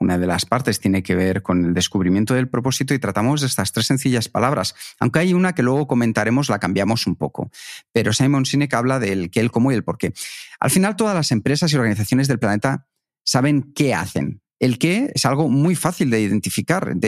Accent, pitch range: Spanish, 110-155 Hz